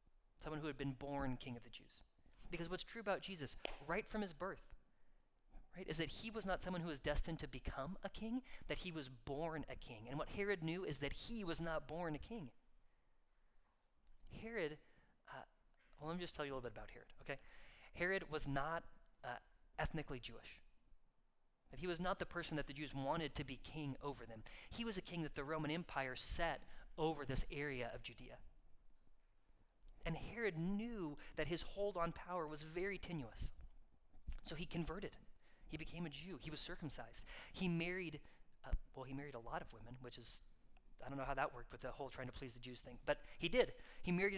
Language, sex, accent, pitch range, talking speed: English, male, American, 135-175 Hz, 205 wpm